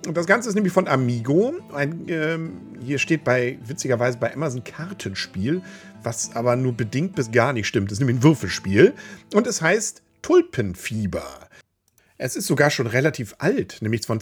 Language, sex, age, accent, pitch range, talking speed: German, male, 50-69, German, 130-195 Hz, 175 wpm